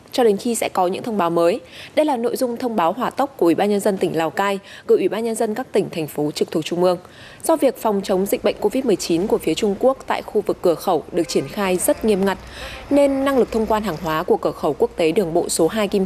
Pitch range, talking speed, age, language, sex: 180-255 Hz, 290 wpm, 20-39, Vietnamese, female